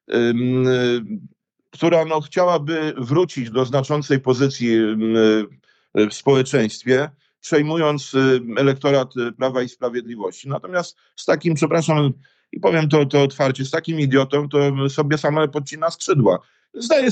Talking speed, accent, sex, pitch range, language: 105 wpm, native, male, 130-155 Hz, Polish